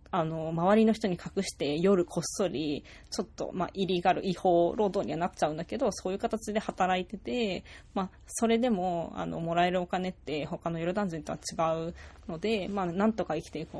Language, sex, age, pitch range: Japanese, female, 20-39, 165-210 Hz